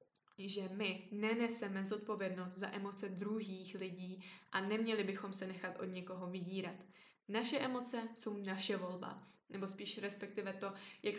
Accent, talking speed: native, 140 wpm